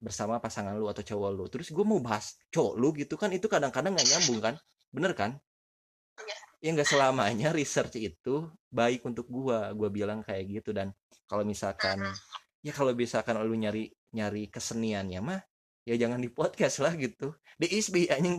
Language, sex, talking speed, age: English, male, 175 wpm, 20-39